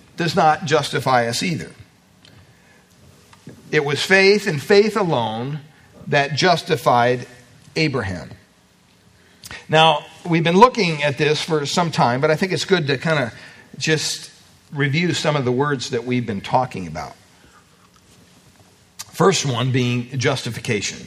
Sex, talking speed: male, 130 wpm